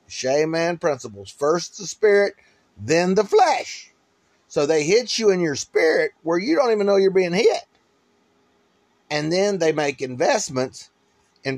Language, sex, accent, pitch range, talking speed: English, male, American, 150-210 Hz, 155 wpm